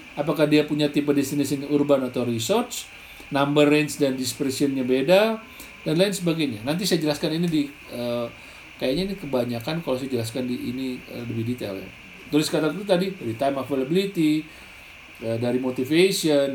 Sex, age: male, 40-59